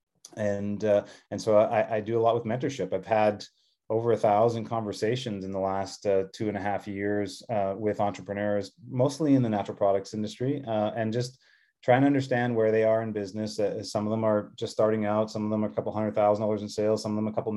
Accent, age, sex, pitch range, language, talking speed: American, 30-49, male, 105-115 Hz, English, 240 wpm